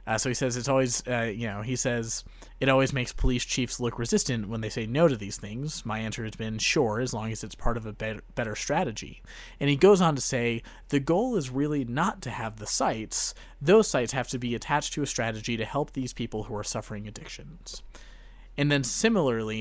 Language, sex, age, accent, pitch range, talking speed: English, male, 30-49, American, 110-145 Hz, 225 wpm